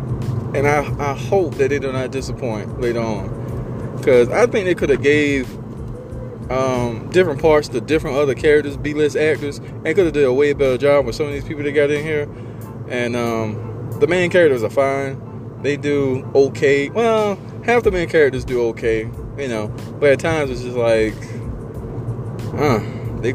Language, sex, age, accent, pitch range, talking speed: English, male, 20-39, American, 115-150 Hz, 185 wpm